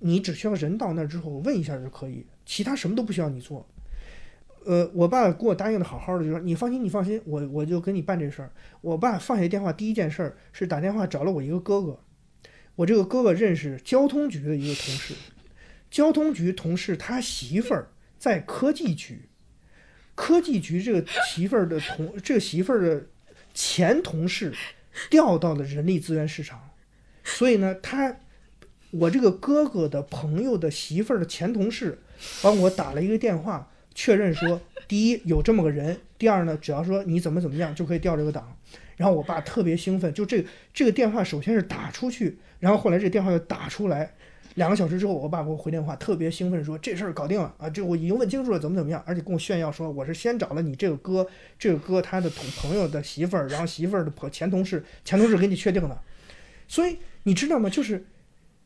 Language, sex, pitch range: English, male, 160-210 Hz